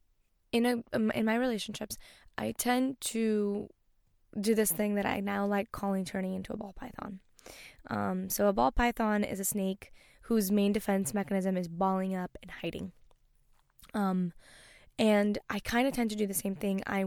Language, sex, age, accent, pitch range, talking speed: English, female, 10-29, American, 190-215 Hz, 175 wpm